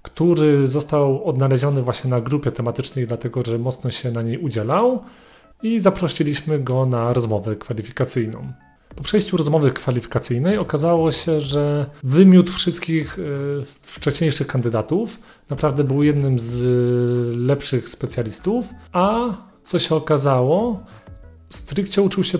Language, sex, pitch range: Polish, male, 130-160 Hz